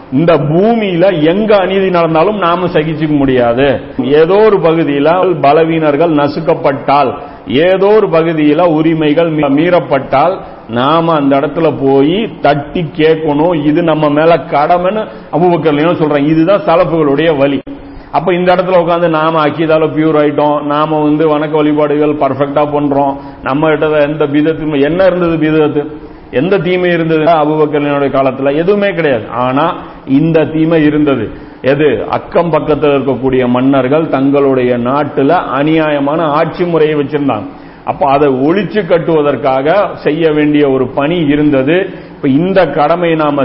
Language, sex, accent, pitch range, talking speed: Tamil, male, native, 140-165 Hz, 125 wpm